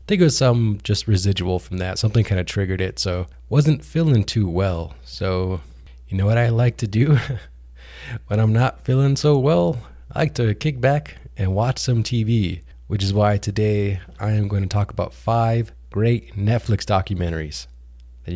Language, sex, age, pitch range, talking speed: English, male, 20-39, 90-115 Hz, 185 wpm